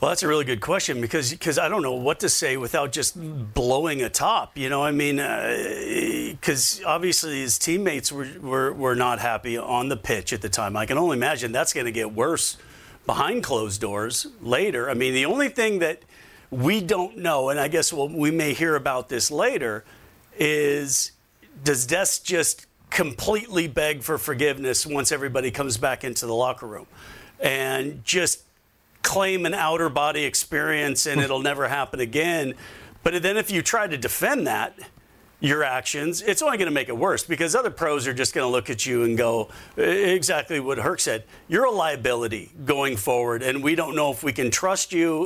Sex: male